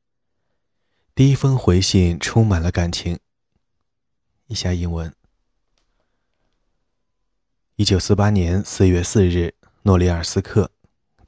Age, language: 20-39, Chinese